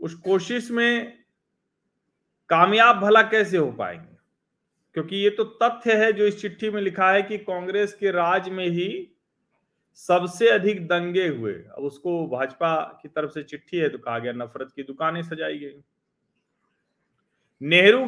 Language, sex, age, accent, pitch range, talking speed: Hindi, male, 40-59, native, 160-205 Hz, 155 wpm